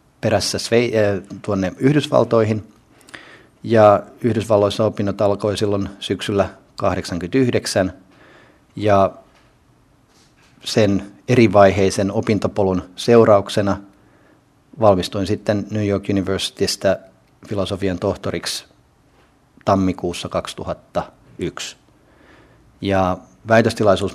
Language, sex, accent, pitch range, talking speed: Finnish, male, native, 95-110 Hz, 60 wpm